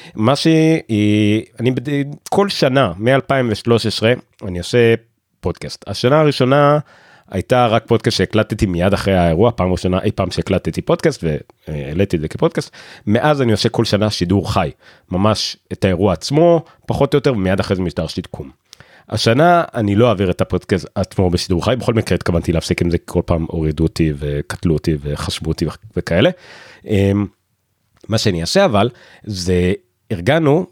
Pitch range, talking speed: 90-120 Hz, 145 wpm